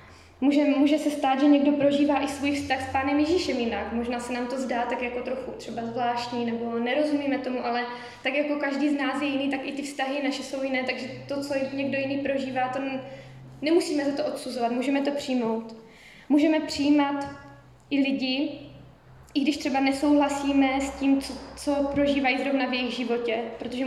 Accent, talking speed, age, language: native, 185 wpm, 20-39, Czech